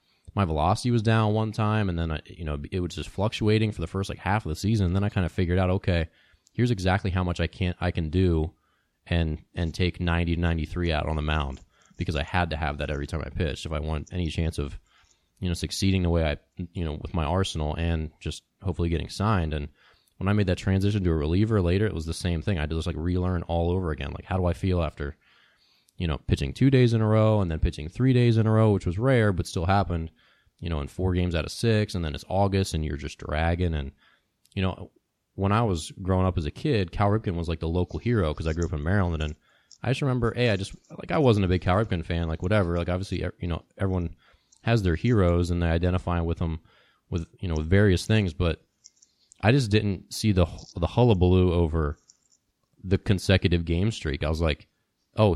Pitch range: 80-100 Hz